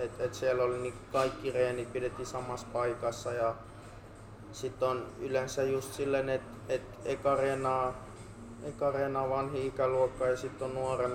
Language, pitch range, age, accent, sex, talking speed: Finnish, 120-135 Hz, 20-39, native, male, 140 wpm